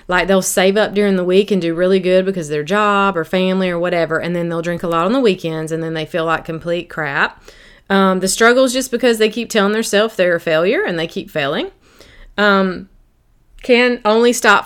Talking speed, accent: 230 wpm, American